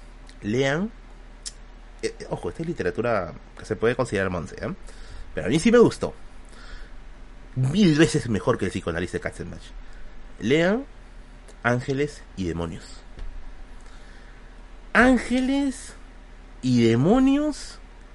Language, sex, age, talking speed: Spanish, male, 30-49, 110 wpm